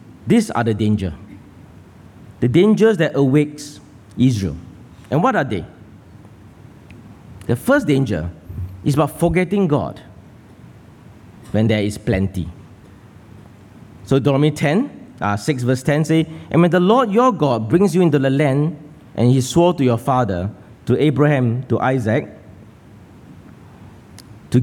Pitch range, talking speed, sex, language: 100-150 Hz, 130 wpm, male, English